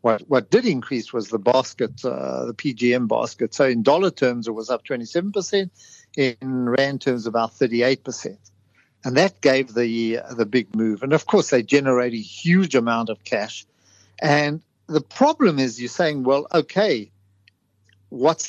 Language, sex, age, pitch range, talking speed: English, male, 50-69, 115-150 Hz, 170 wpm